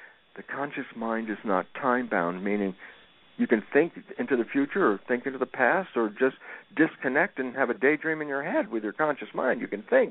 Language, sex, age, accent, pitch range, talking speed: English, male, 60-79, American, 115-150 Hz, 210 wpm